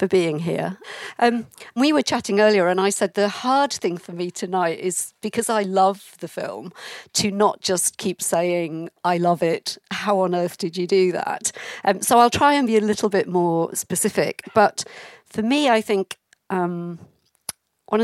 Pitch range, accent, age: 170-205 Hz, British, 50-69